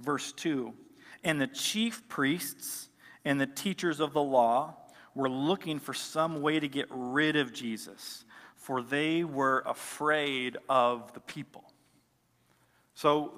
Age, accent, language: 40-59, American, English